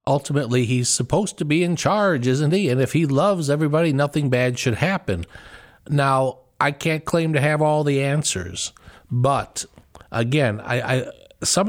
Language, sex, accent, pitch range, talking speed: English, male, American, 110-145 Hz, 165 wpm